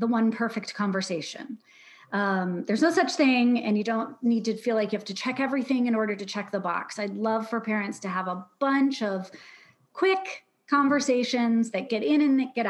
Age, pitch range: 30-49, 210-270 Hz